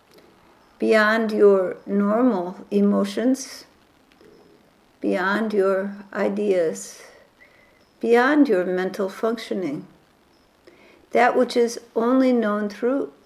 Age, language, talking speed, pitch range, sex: 60-79, English, 75 wpm, 200-250 Hz, female